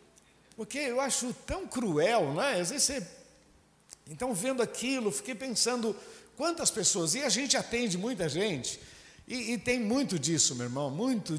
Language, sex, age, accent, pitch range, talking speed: Portuguese, male, 60-79, Brazilian, 155-205 Hz, 160 wpm